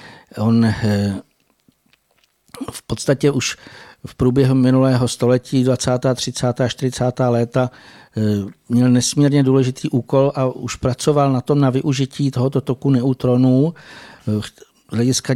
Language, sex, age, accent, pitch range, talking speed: Czech, male, 60-79, native, 120-135 Hz, 105 wpm